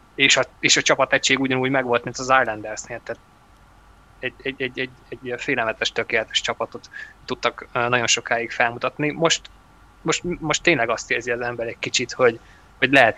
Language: Hungarian